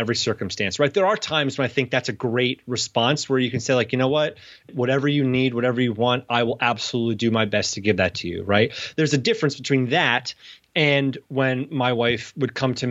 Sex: male